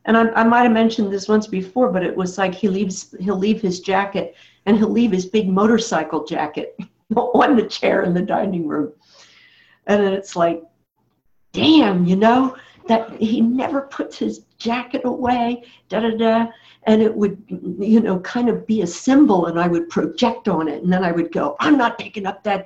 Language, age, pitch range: English, 60-79, 190-250 Hz